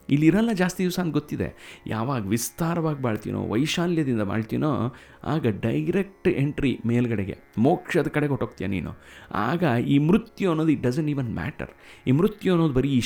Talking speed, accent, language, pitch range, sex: 140 wpm, native, Kannada, 105-155 Hz, male